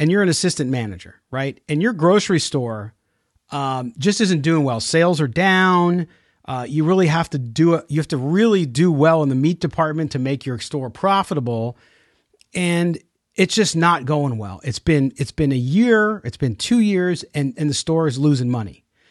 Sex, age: male, 40-59